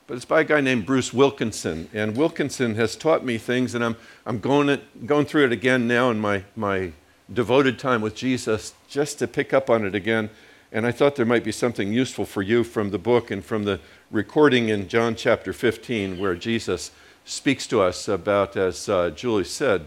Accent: American